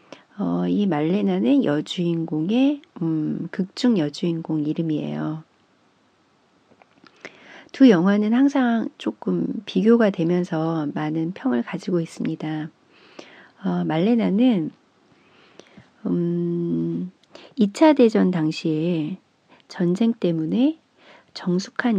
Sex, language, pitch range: female, Korean, 160-235 Hz